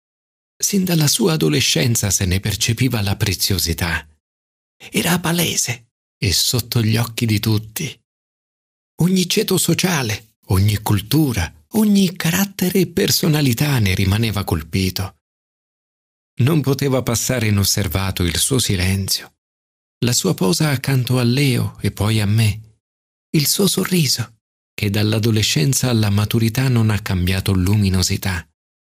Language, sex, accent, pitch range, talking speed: Italian, male, native, 100-145 Hz, 120 wpm